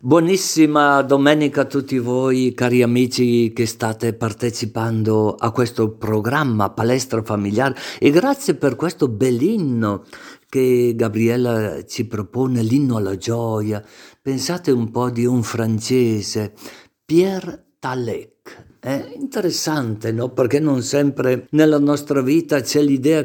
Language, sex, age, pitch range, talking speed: Italian, male, 50-69, 120-160 Hz, 120 wpm